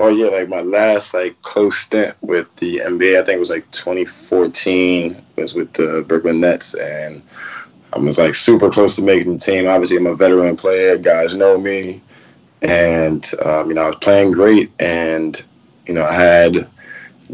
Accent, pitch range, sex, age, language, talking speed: American, 85-100 Hz, male, 20-39, English, 185 wpm